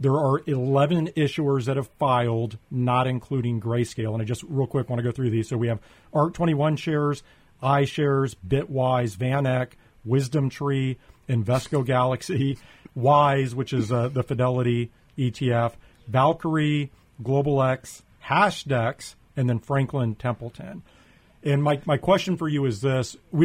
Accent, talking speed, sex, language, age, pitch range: American, 145 wpm, male, English, 40-59, 125-145 Hz